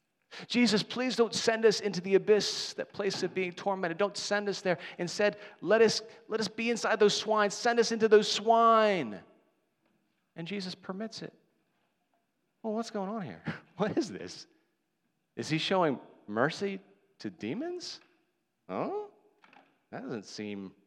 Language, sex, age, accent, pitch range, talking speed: English, male, 40-59, American, 170-230 Hz, 160 wpm